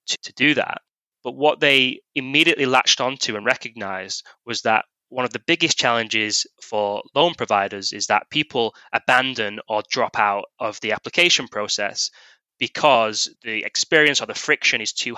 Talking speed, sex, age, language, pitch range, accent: 160 wpm, male, 10-29, English, 115-140 Hz, British